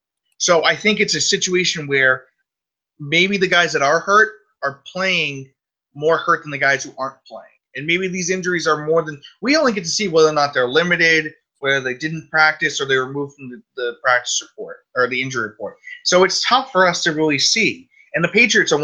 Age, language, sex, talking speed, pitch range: 30-49, English, male, 225 wpm, 135-175 Hz